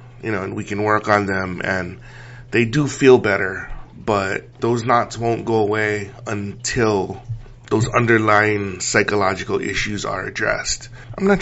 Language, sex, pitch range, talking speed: English, male, 100-120 Hz, 145 wpm